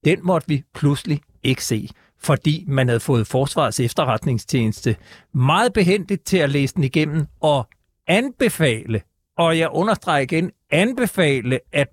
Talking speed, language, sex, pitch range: 135 wpm, Danish, male, 145-195 Hz